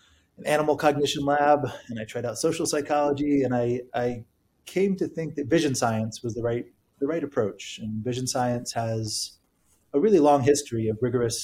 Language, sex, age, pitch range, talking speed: English, male, 30-49, 120-145 Hz, 185 wpm